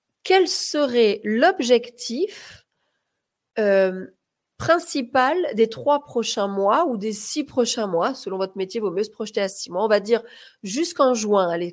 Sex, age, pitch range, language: female, 30-49, 205-305 Hz, French